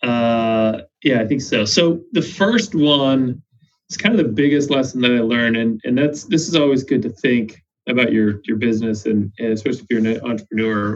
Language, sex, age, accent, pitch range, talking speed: English, male, 30-49, American, 115-150 Hz, 210 wpm